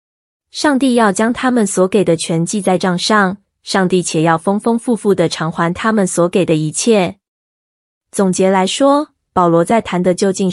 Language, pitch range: Chinese, 180-220 Hz